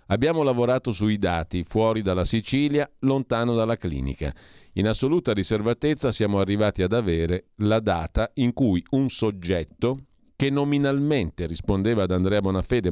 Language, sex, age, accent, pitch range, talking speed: Italian, male, 40-59, native, 90-120 Hz, 135 wpm